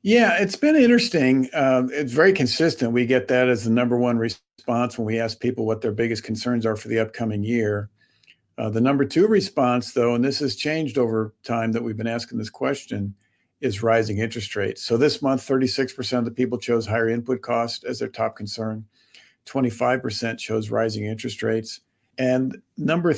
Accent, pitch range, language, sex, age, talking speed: American, 115-130 Hz, English, male, 50-69, 190 wpm